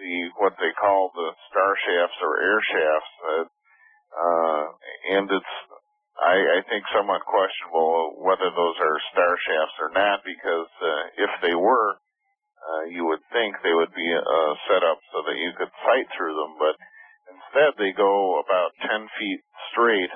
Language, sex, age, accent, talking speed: English, male, 50-69, American, 165 wpm